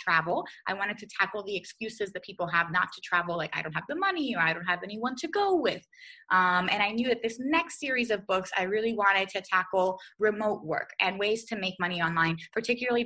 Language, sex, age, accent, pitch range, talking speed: English, female, 20-39, American, 170-210 Hz, 235 wpm